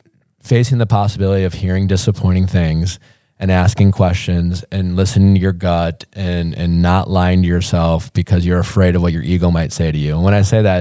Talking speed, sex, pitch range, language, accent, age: 205 wpm, male, 90-110 Hz, English, American, 20-39